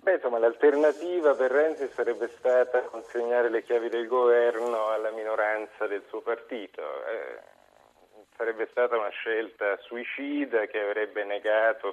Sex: male